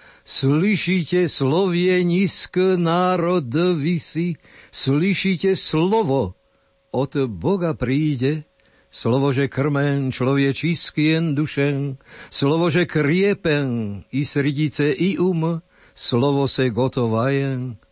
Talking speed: 85 wpm